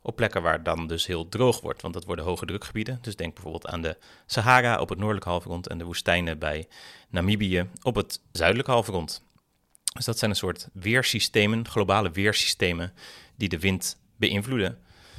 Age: 30-49